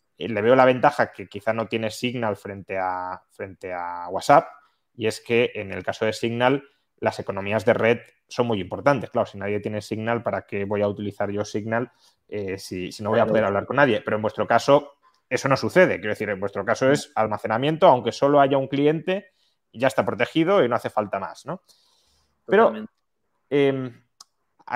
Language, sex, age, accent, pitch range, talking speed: Spanish, male, 20-39, Spanish, 105-145 Hz, 190 wpm